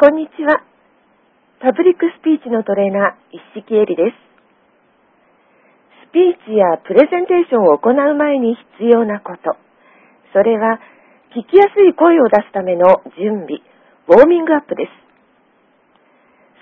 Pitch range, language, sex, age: 215-300 Hz, Japanese, female, 50-69